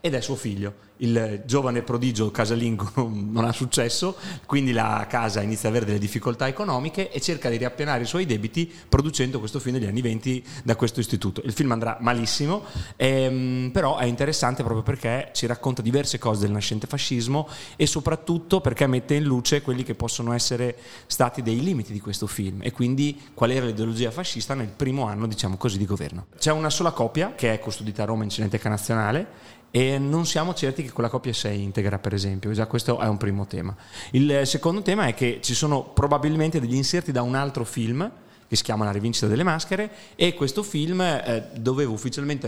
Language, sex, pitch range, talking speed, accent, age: Italian, male, 110-140 Hz, 195 wpm, native, 30-49